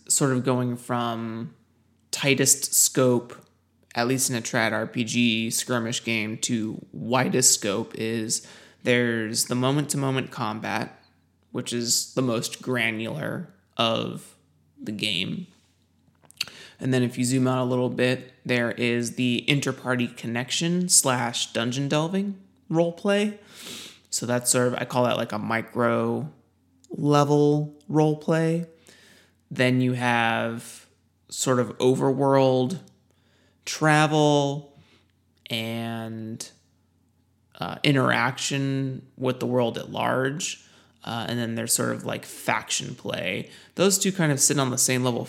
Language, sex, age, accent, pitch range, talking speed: English, male, 20-39, American, 115-135 Hz, 130 wpm